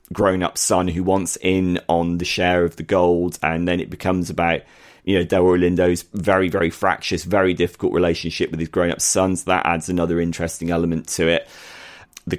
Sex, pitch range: male, 85-95 Hz